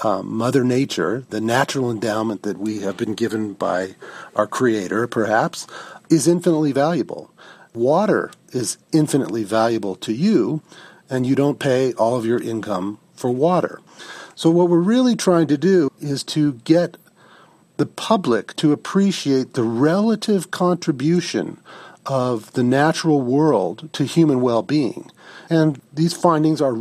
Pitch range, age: 120-160 Hz, 40-59